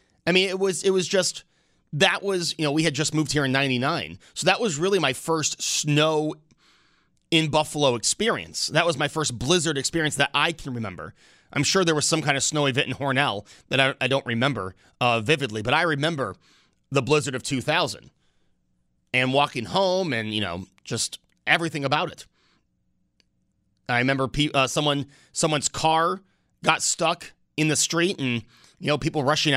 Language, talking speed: English, 185 wpm